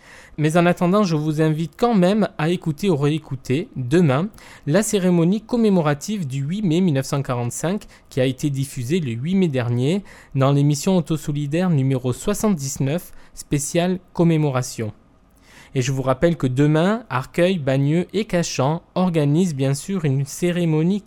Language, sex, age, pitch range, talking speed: French, male, 20-39, 135-180 Hz, 140 wpm